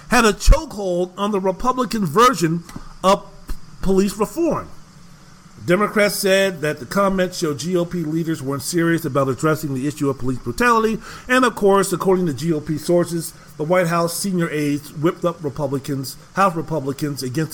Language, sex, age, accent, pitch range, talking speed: English, male, 40-59, American, 155-200 Hz, 155 wpm